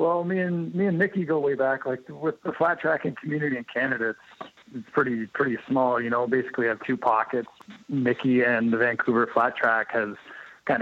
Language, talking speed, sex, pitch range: English, 200 wpm, male, 120-140 Hz